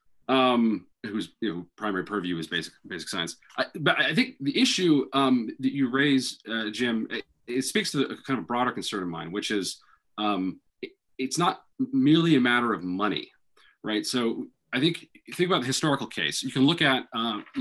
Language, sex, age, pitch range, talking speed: English, male, 40-59, 100-130 Hz, 200 wpm